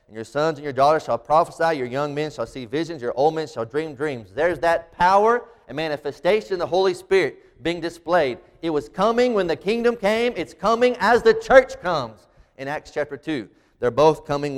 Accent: American